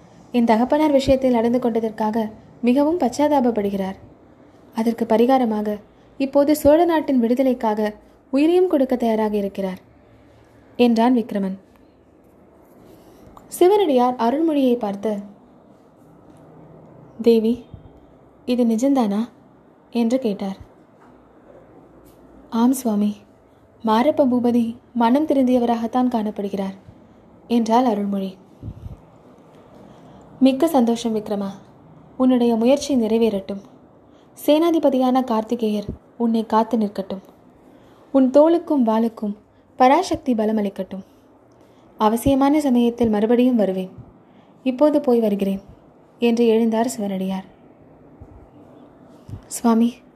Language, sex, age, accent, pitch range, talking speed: Tamil, female, 20-39, native, 215-260 Hz, 70 wpm